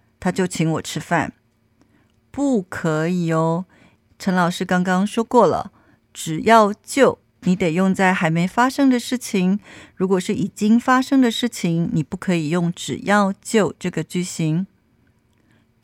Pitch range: 160-215 Hz